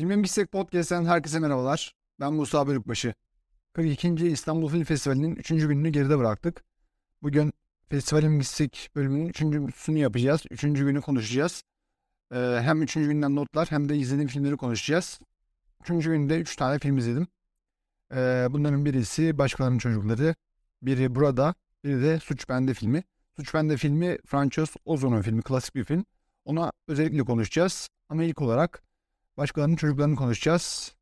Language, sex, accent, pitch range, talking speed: Turkish, male, native, 125-155 Hz, 135 wpm